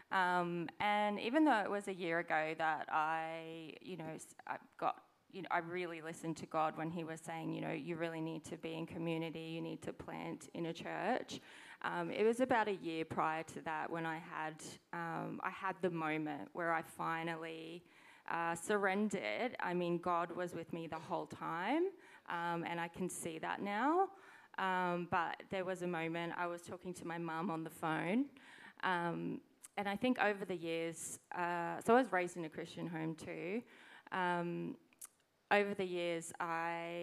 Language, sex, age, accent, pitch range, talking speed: English, female, 20-39, Australian, 165-195 Hz, 190 wpm